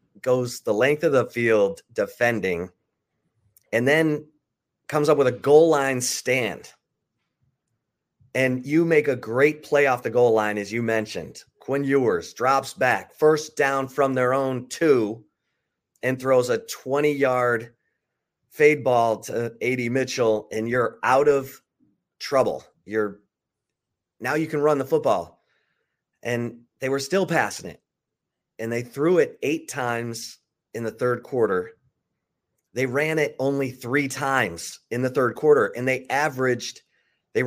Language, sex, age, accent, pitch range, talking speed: English, male, 30-49, American, 115-145 Hz, 145 wpm